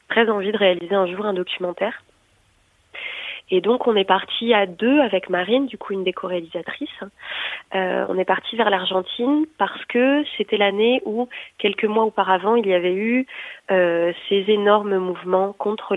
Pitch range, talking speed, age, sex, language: 185-220 Hz, 170 wpm, 20-39, female, French